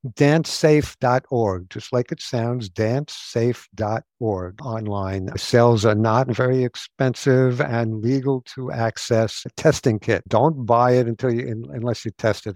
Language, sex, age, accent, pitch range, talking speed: English, male, 60-79, American, 105-125 Hz, 135 wpm